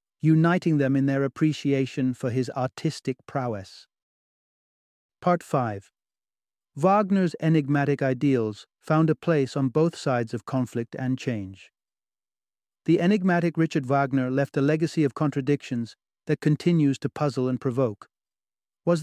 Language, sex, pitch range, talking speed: English, male, 130-150 Hz, 125 wpm